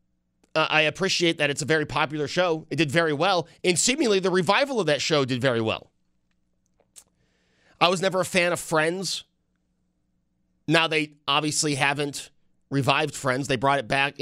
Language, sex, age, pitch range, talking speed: English, male, 30-49, 135-175 Hz, 175 wpm